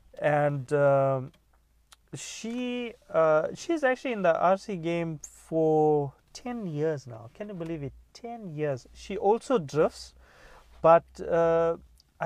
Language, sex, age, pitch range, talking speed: English, male, 30-49, 135-170 Hz, 125 wpm